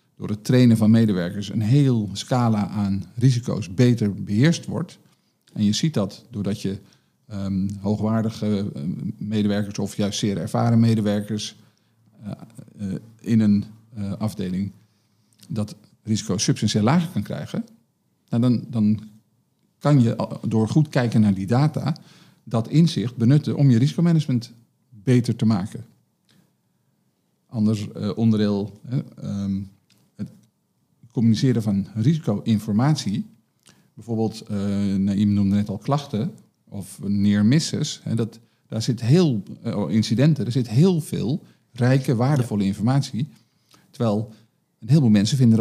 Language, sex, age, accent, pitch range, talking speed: Dutch, male, 50-69, Dutch, 105-130 Hz, 130 wpm